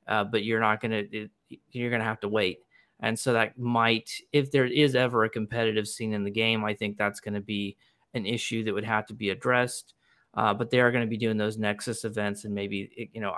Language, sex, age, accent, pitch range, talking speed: English, male, 30-49, American, 105-120 Hz, 245 wpm